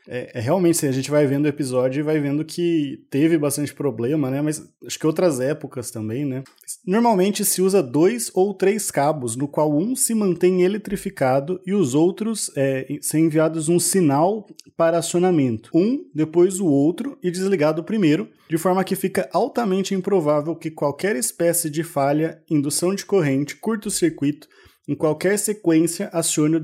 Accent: Brazilian